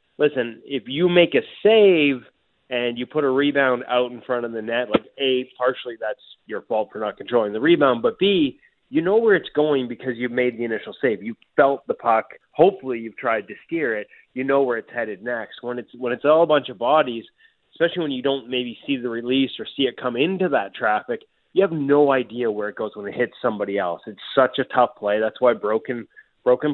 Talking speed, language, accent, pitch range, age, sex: 225 wpm, English, American, 115-155 Hz, 20-39, male